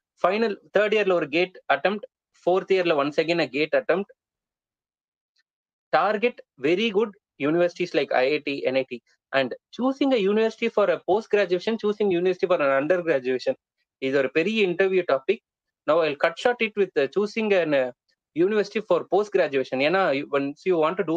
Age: 20-39